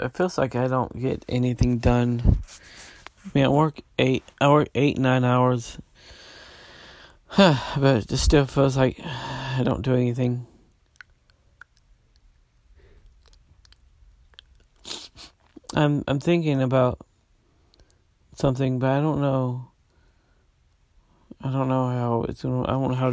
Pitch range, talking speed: 110-135 Hz, 115 wpm